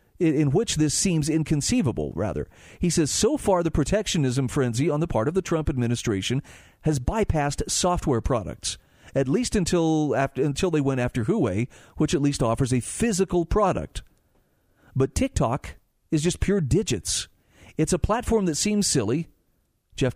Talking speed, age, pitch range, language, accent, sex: 160 wpm, 40-59, 125-175 Hz, English, American, male